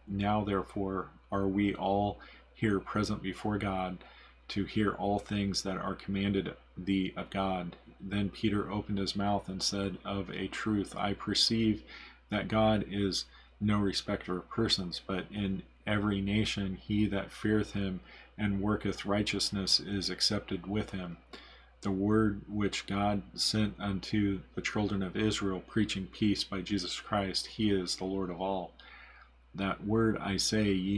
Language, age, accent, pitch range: English, 40-59, American, 95-105 Hz